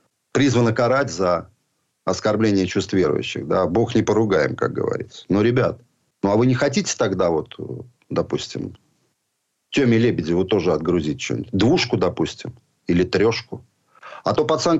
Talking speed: 140 wpm